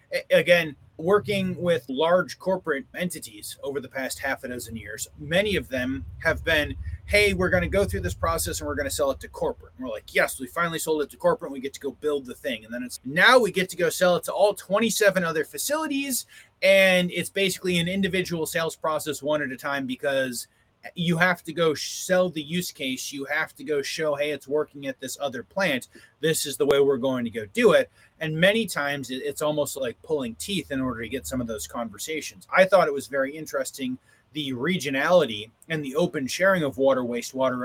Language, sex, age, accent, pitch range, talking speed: English, male, 30-49, American, 135-185 Hz, 220 wpm